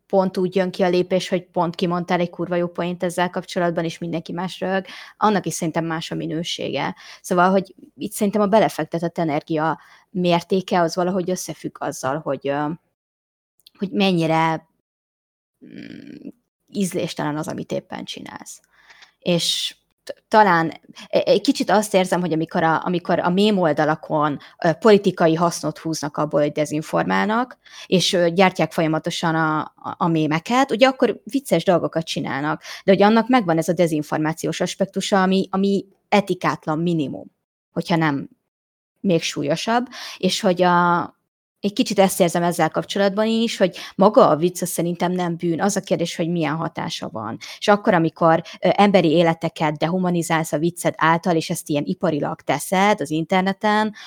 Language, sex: Hungarian, female